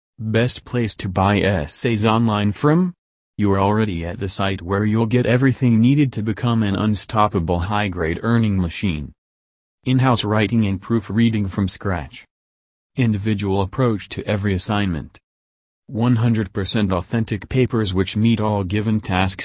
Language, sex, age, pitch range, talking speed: English, male, 40-59, 90-110 Hz, 140 wpm